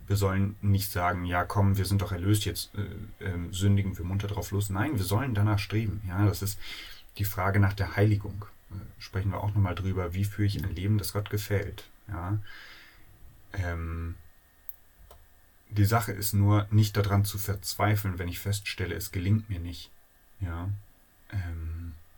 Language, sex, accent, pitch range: German, male, German, 90-105 Hz